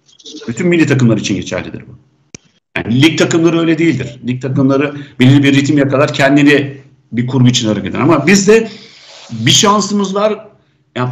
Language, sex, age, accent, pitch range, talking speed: Turkish, male, 50-69, native, 135-175 Hz, 160 wpm